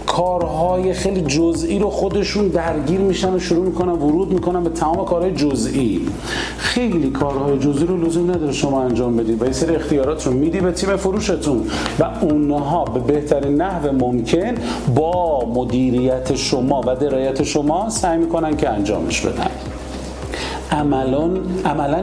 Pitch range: 130-175 Hz